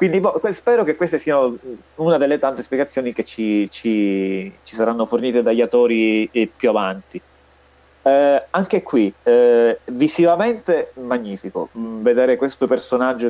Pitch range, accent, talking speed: 105-125 Hz, native, 135 wpm